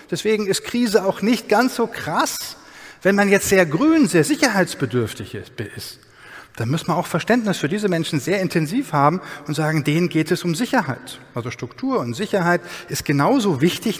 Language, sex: German, male